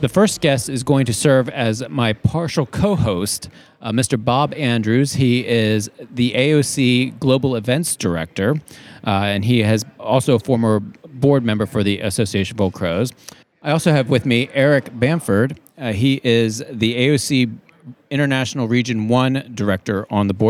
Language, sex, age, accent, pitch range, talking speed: English, male, 40-59, American, 110-130 Hz, 160 wpm